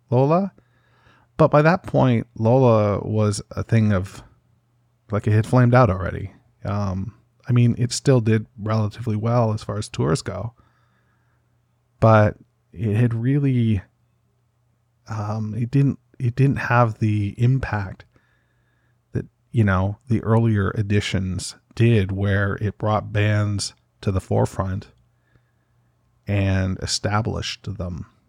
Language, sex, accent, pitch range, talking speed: English, male, American, 100-120 Hz, 125 wpm